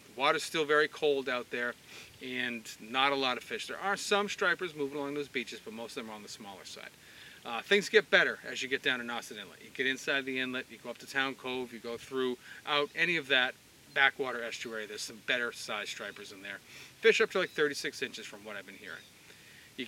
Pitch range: 125-155 Hz